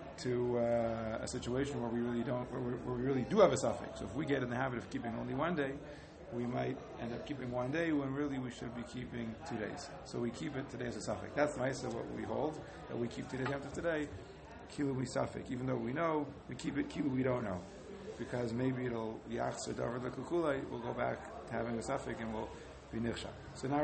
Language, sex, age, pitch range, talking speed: English, male, 40-59, 120-150 Hz, 235 wpm